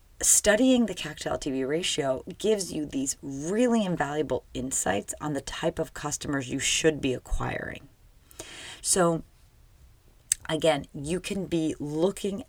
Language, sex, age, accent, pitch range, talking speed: English, female, 30-49, American, 140-180 Hz, 120 wpm